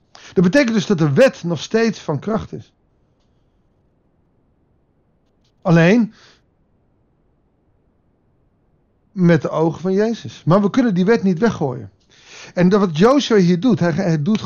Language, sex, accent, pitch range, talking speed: Dutch, male, Dutch, 125-185 Hz, 130 wpm